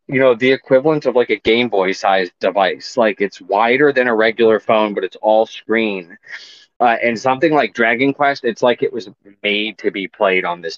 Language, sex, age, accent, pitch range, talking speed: English, male, 30-49, American, 105-130 Hz, 210 wpm